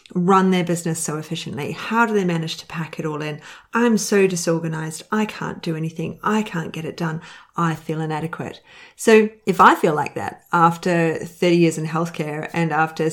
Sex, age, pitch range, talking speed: female, 30-49, 160-190 Hz, 190 wpm